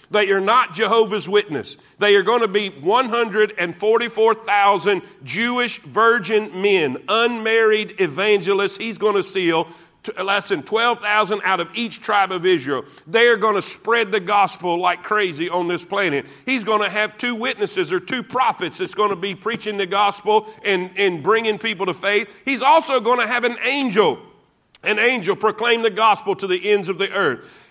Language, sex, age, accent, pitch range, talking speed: English, male, 50-69, American, 200-235 Hz, 175 wpm